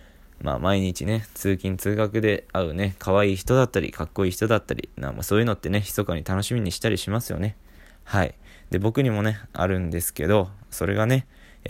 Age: 20-39